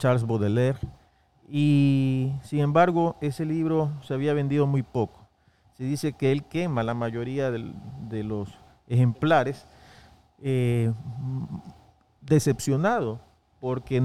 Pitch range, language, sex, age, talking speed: 115-145 Hz, Spanish, male, 40-59, 110 wpm